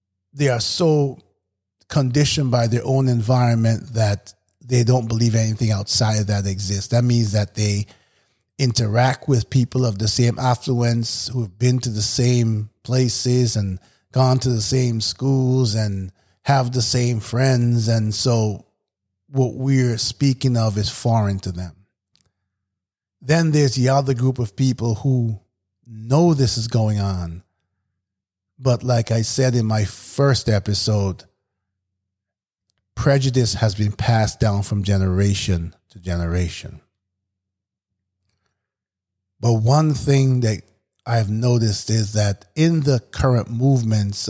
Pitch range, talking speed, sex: 100-125 Hz, 135 wpm, male